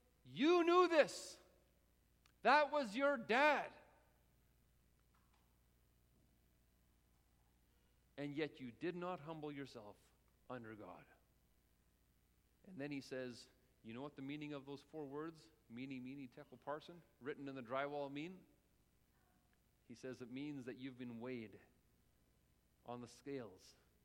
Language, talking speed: English, 120 wpm